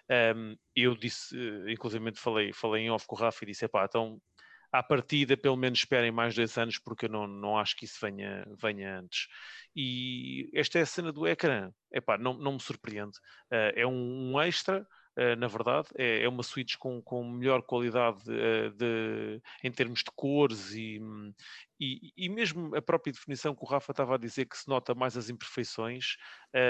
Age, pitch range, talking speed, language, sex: 30-49, 115-135 Hz, 180 wpm, English, male